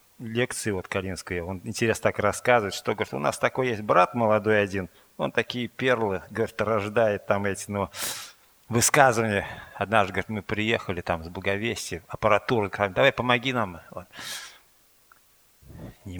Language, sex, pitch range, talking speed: Russian, male, 100-125 Hz, 145 wpm